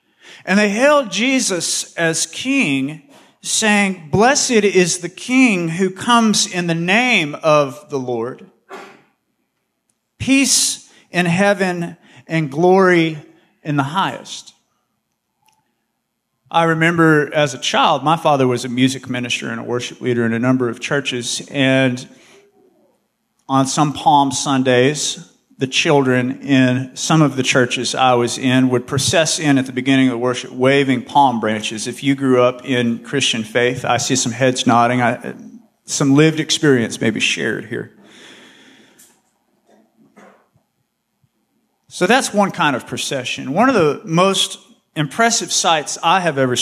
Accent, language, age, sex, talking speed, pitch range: American, English, 40-59, male, 140 wpm, 130-180 Hz